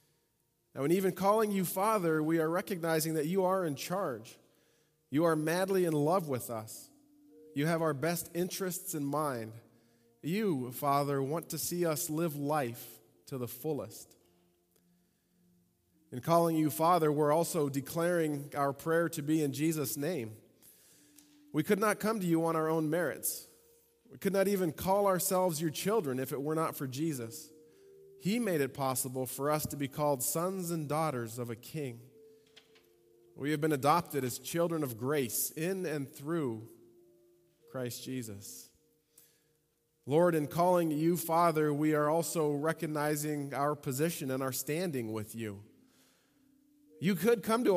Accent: American